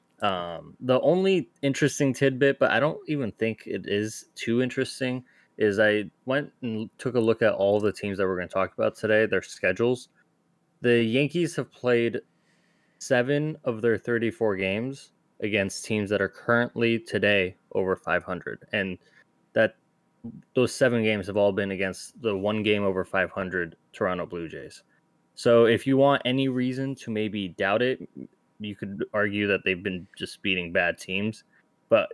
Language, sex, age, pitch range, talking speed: English, male, 20-39, 100-125 Hz, 165 wpm